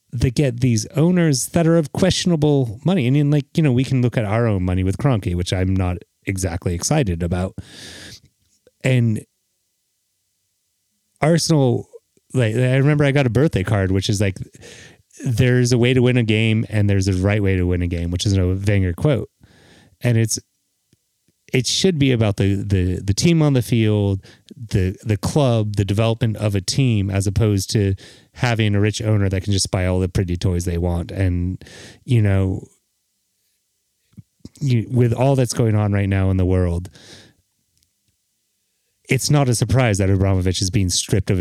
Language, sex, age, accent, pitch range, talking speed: English, male, 30-49, American, 95-125 Hz, 180 wpm